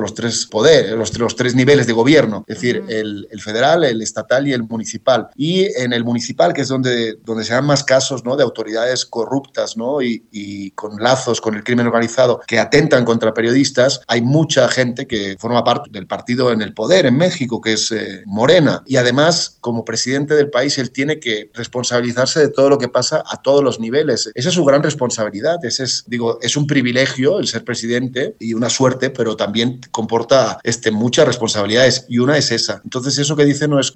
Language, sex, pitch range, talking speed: Spanish, male, 115-135 Hz, 205 wpm